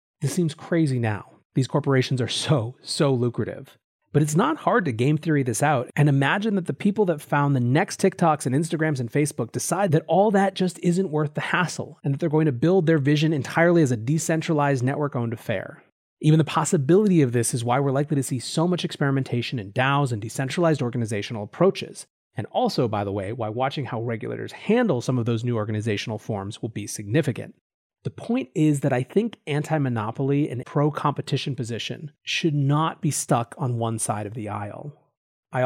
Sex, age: male, 30-49